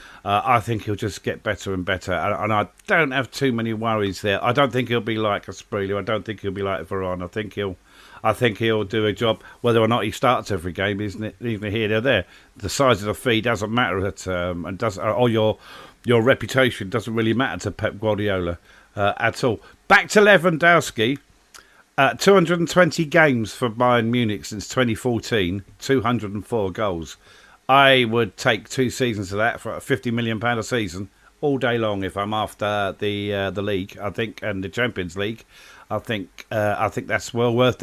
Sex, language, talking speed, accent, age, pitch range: male, English, 205 wpm, British, 50-69, 105-130 Hz